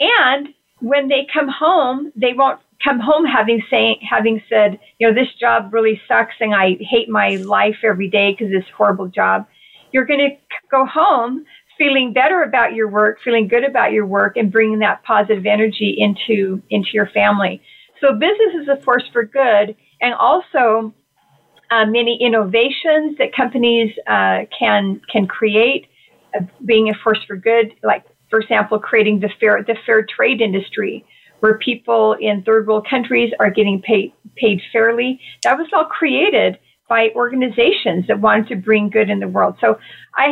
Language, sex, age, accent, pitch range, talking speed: English, female, 40-59, American, 210-255 Hz, 170 wpm